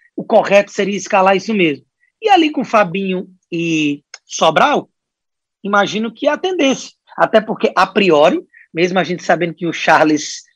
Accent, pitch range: Brazilian, 160-215 Hz